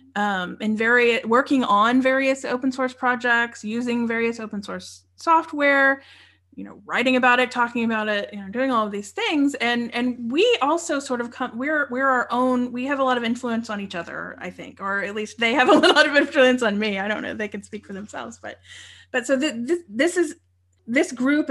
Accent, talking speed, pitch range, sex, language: American, 225 wpm, 210-270 Hz, female, English